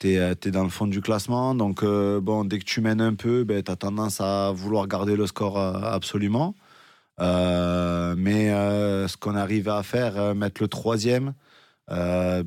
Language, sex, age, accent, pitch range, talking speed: French, male, 20-39, French, 95-110 Hz, 190 wpm